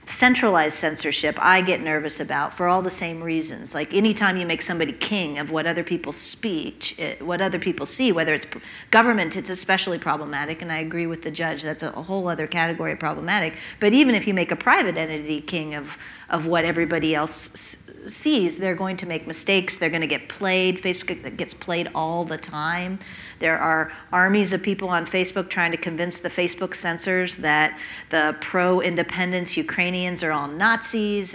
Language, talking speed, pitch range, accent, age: English, 190 wpm, 160-195 Hz, American, 40-59